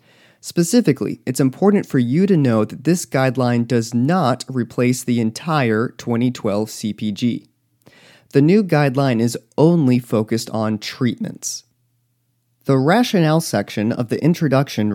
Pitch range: 115-155 Hz